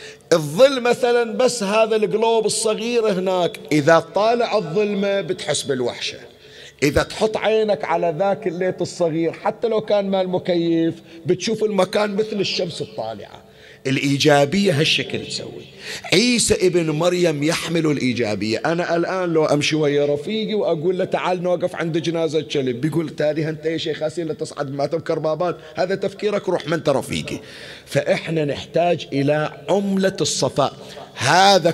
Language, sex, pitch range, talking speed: Arabic, male, 145-195 Hz, 135 wpm